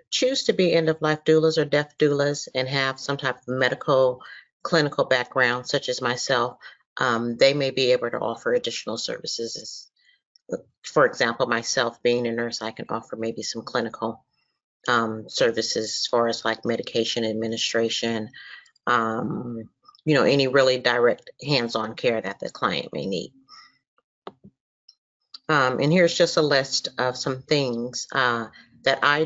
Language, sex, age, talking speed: English, female, 40-59, 150 wpm